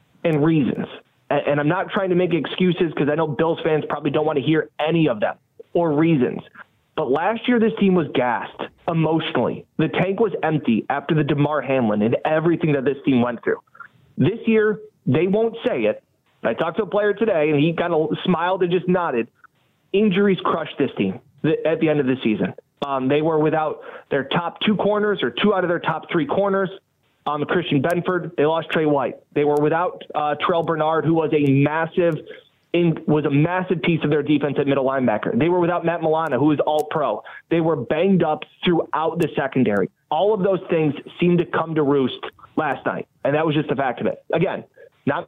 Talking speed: 210 wpm